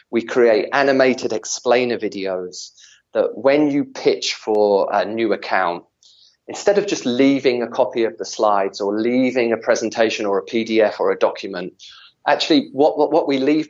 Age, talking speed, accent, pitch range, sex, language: 30-49, 160 wpm, British, 115-175 Hz, male, English